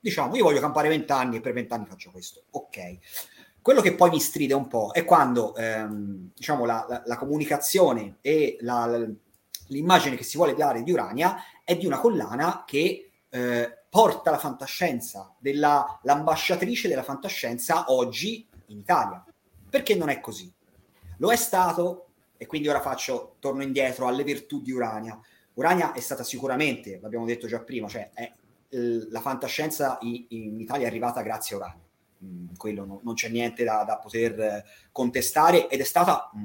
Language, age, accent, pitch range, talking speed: Italian, 30-49, native, 105-145 Hz, 160 wpm